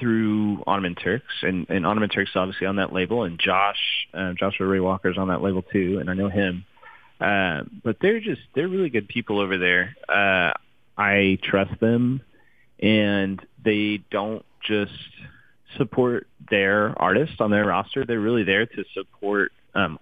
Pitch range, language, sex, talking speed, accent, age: 95-115 Hz, English, male, 165 wpm, American, 30-49